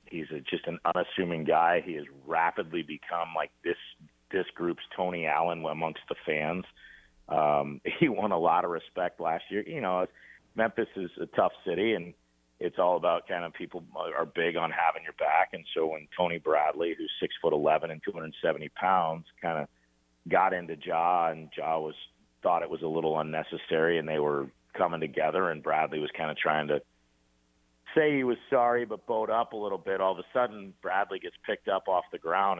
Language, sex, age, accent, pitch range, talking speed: English, male, 40-59, American, 70-90 Hz, 200 wpm